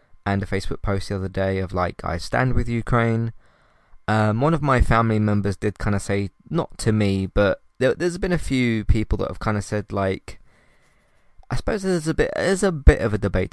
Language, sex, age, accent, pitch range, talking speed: English, male, 20-39, British, 95-110 Hz, 210 wpm